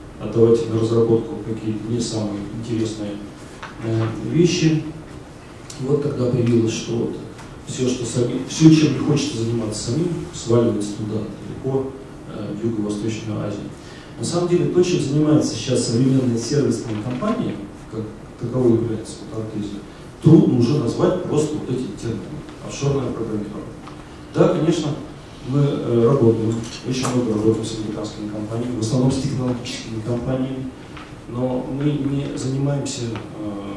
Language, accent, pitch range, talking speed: Russian, native, 110-140 Hz, 125 wpm